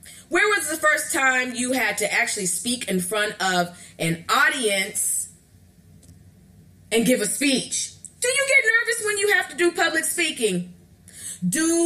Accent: American